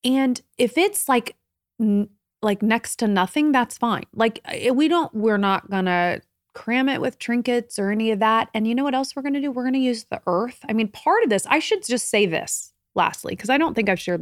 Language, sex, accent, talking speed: English, female, American, 240 wpm